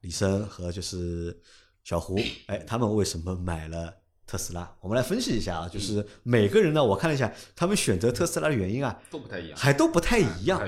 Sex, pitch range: male, 90-110 Hz